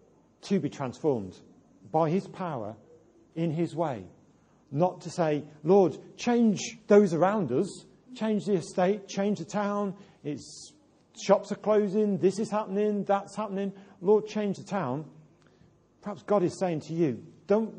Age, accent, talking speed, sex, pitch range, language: 40-59, British, 140 wpm, male, 145-200 Hz, English